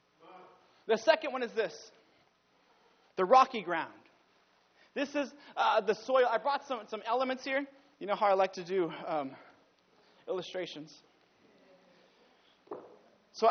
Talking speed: 130 wpm